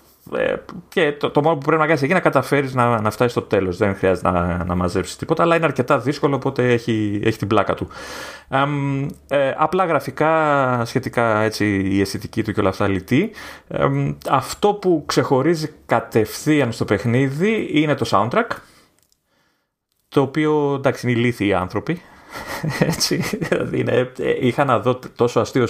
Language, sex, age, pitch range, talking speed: Greek, male, 30-49, 105-140 Hz, 160 wpm